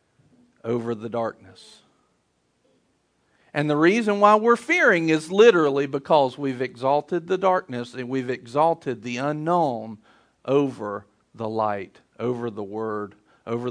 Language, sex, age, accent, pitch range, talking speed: English, male, 50-69, American, 110-135 Hz, 125 wpm